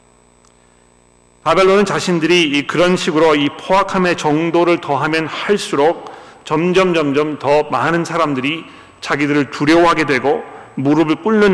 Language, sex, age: Korean, male, 40-59